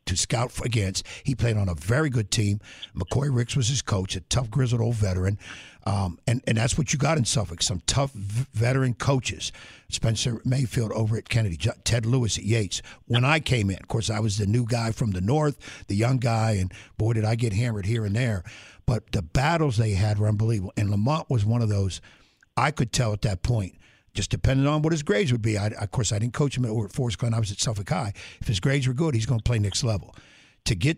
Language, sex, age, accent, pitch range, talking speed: English, male, 60-79, American, 105-130 Hz, 240 wpm